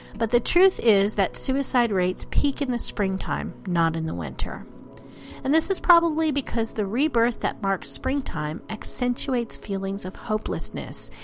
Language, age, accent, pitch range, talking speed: English, 40-59, American, 180-245 Hz, 155 wpm